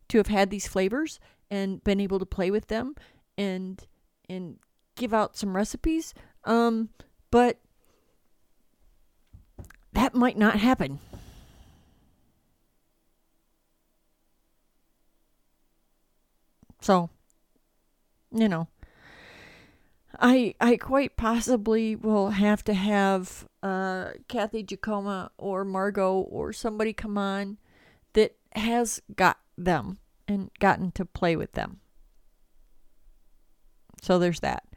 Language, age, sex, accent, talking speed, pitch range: English, 40-59, female, American, 100 wpm, 180-215 Hz